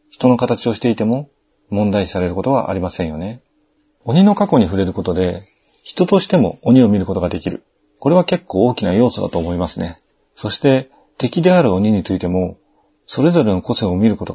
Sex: male